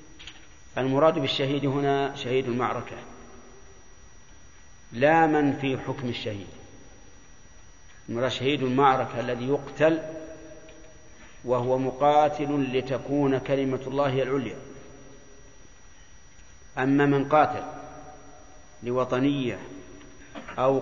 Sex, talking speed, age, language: male, 75 wpm, 50-69, Arabic